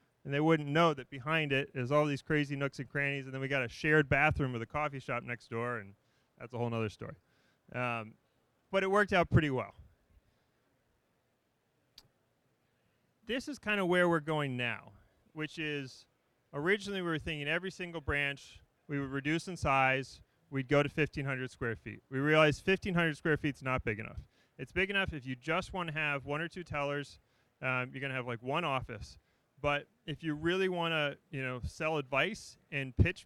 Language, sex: English, male